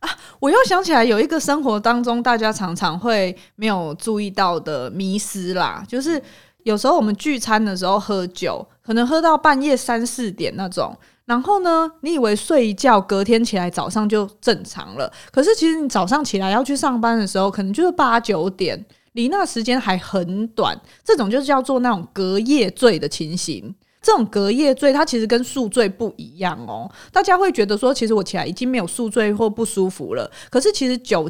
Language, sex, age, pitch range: Chinese, female, 20-39, 200-275 Hz